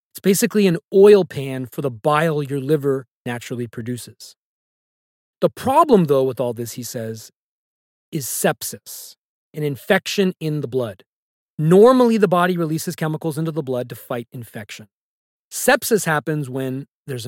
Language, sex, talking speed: English, male, 145 wpm